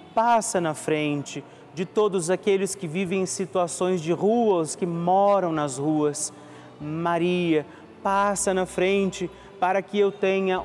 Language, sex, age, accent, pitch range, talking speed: Portuguese, male, 40-59, Brazilian, 165-195 Hz, 135 wpm